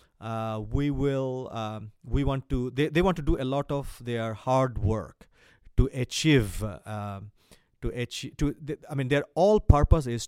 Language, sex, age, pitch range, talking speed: English, male, 30-49, 110-150 Hz, 175 wpm